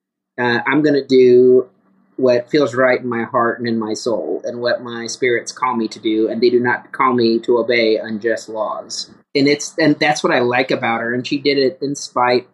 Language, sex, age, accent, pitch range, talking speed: English, male, 30-49, American, 120-145 Hz, 225 wpm